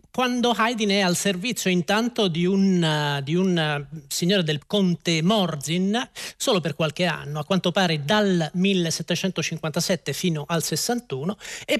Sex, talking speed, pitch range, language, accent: male, 130 wpm, 150-195 Hz, Italian, native